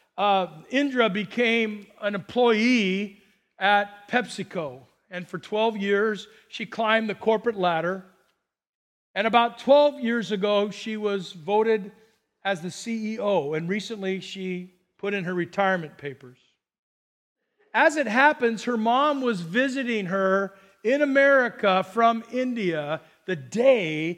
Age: 50-69